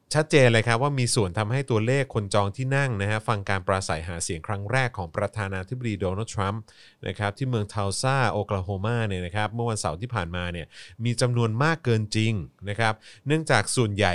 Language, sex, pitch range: Thai, male, 95-120 Hz